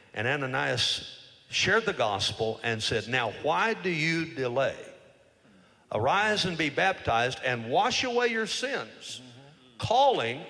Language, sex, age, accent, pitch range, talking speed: English, male, 50-69, American, 110-180 Hz, 125 wpm